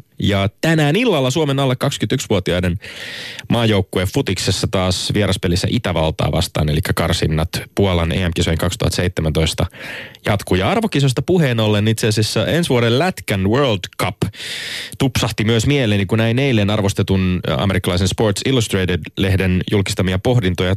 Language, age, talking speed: Finnish, 30-49, 120 wpm